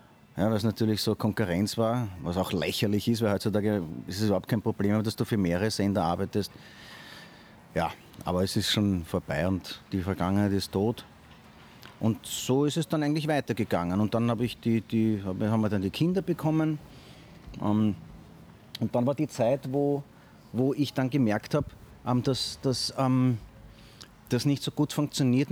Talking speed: 165 wpm